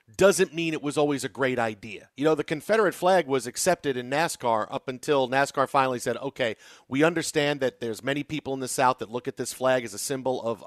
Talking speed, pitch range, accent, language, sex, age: 230 wpm, 130-150 Hz, American, English, male, 40-59